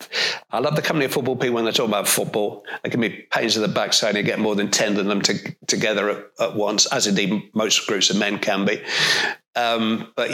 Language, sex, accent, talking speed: English, male, British, 245 wpm